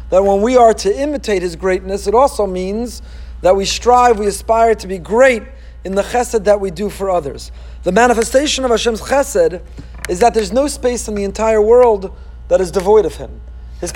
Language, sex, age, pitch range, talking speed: Hebrew, male, 40-59, 185-245 Hz, 200 wpm